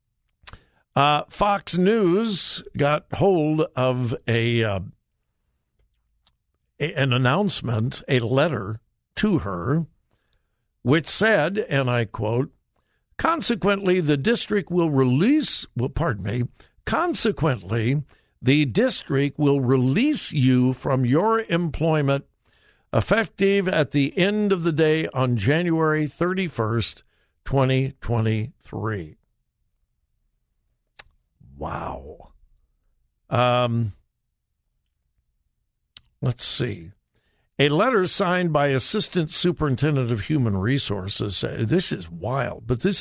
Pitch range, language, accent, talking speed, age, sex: 120-170 Hz, English, American, 90 wpm, 60-79, male